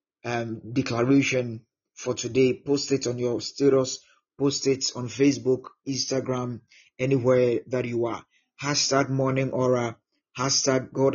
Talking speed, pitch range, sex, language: 125 wpm, 120-135 Hz, male, English